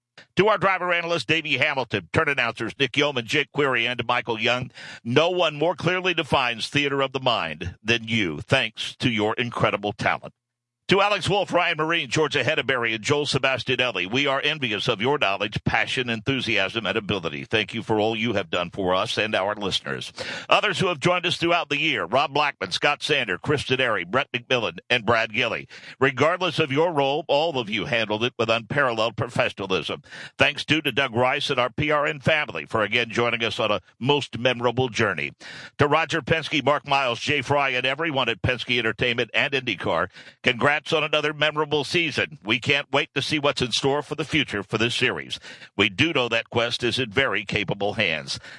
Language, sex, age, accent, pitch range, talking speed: English, male, 60-79, American, 115-150 Hz, 190 wpm